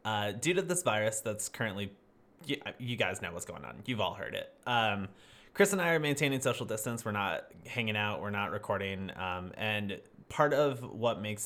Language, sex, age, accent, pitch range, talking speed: English, male, 20-39, American, 105-130 Hz, 205 wpm